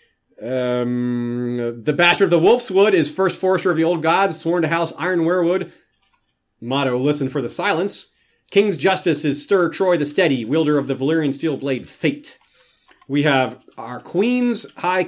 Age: 30-49